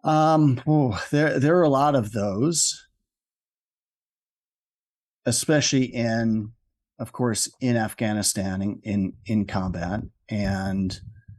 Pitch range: 105-135 Hz